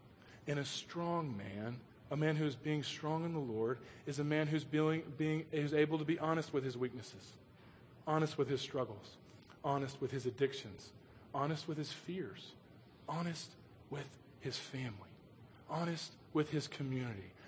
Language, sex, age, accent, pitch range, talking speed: English, male, 40-59, American, 115-150 Hz, 165 wpm